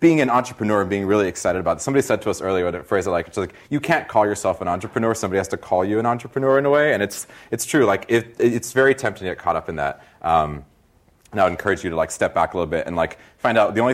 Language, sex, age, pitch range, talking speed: English, male, 30-49, 95-120 Hz, 305 wpm